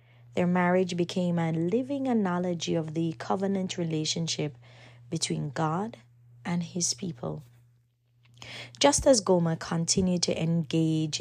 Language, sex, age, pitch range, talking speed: English, female, 20-39, 125-180 Hz, 110 wpm